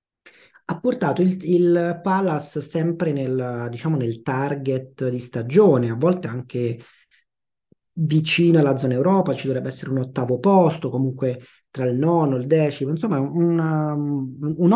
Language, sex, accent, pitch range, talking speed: Italian, male, native, 125-165 Hz, 150 wpm